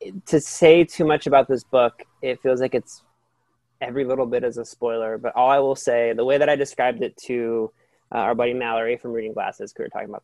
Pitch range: 115-135 Hz